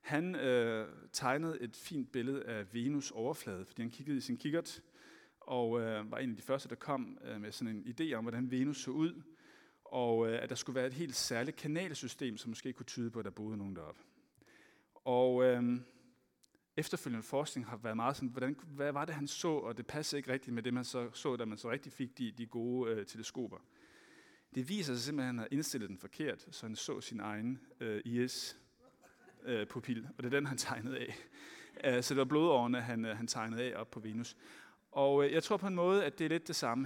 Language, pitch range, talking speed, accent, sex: Danish, 115-140 Hz, 220 wpm, native, male